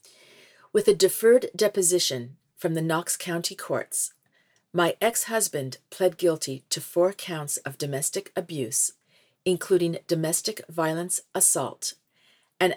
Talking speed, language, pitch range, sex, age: 115 wpm, English, 150-190 Hz, female, 50-69